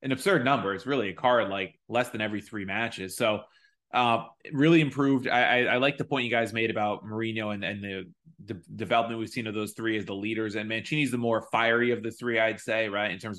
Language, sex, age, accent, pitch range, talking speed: English, male, 20-39, American, 105-125 Hz, 240 wpm